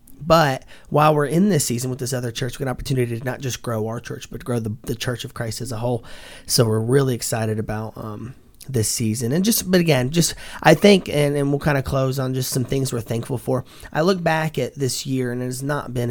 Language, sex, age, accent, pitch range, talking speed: English, male, 30-49, American, 120-140 Hz, 255 wpm